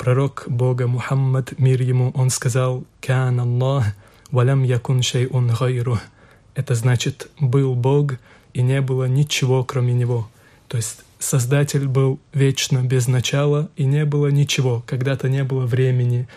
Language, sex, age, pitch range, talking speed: Russian, male, 20-39, 125-140 Hz, 135 wpm